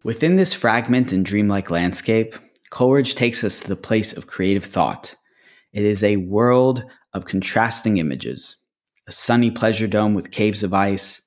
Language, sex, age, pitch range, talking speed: English, male, 30-49, 95-120 Hz, 160 wpm